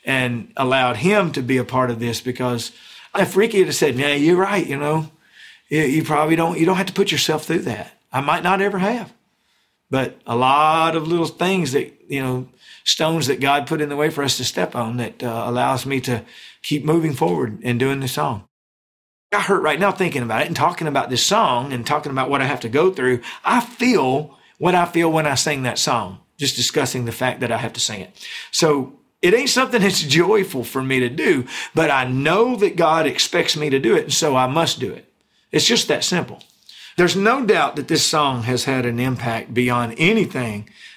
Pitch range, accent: 125-175 Hz, American